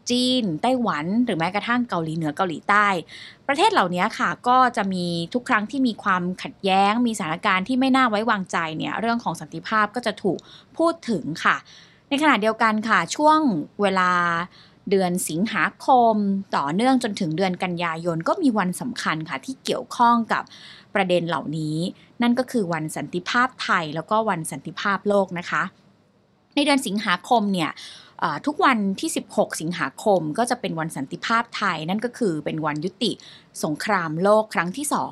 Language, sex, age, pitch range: Thai, female, 20-39, 180-245 Hz